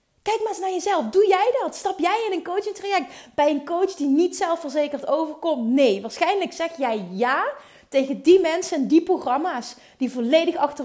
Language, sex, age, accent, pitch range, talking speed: Dutch, female, 30-49, Dutch, 215-295 Hz, 195 wpm